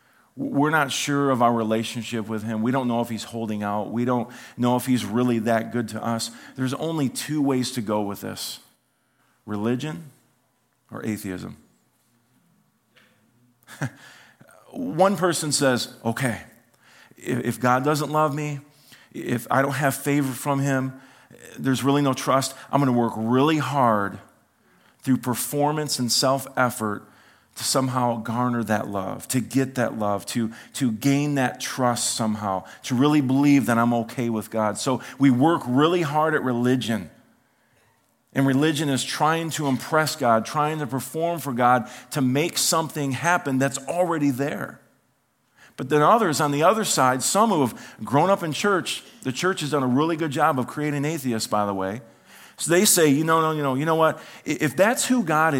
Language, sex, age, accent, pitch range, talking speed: English, male, 40-59, American, 120-150 Hz, 170 wpm